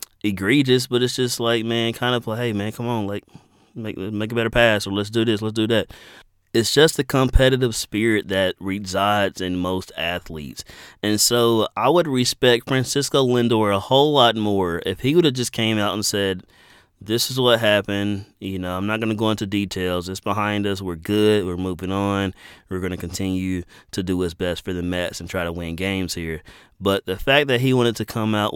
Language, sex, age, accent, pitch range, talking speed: English, male, 30-49, American, 95-115 Hz, 210 wpm